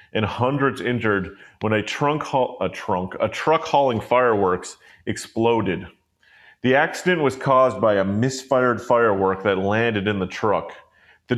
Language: English